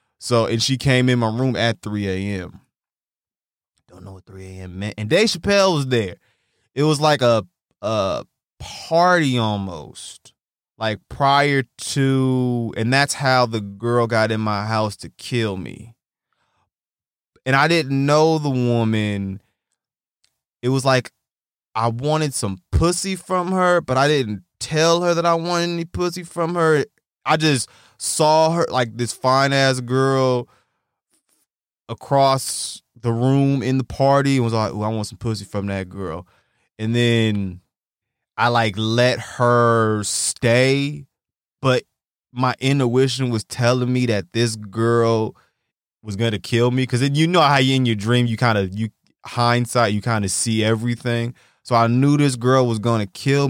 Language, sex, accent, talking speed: English, male, American, 160 wpm